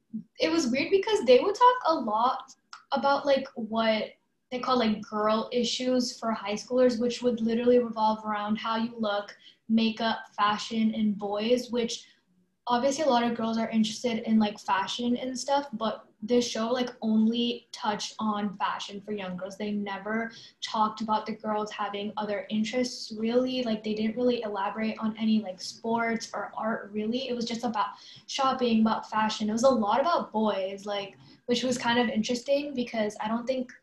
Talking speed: 180 wpm